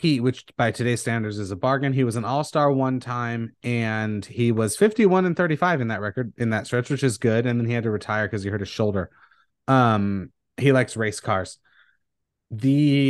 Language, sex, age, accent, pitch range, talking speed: English, male, 30-49, American, 105-135 Hz, 210 wpm